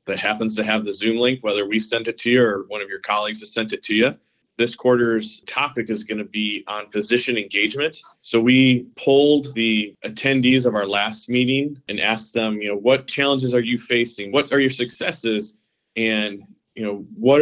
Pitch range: 110-125 Hz